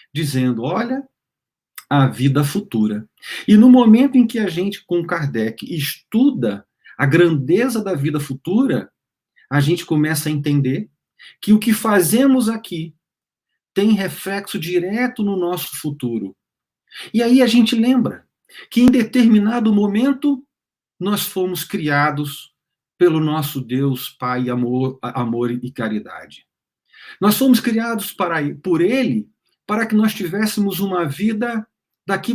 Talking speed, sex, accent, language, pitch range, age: 125 wpm, male, Brazilian, Portuguese, 150-230 Hz, 40-59